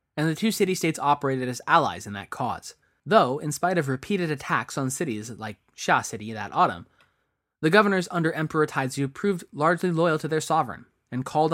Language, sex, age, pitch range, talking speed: English, male, 20-39, 125-165 Hz, 185 wpm